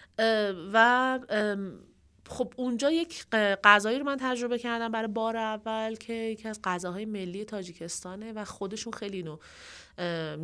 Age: 30-49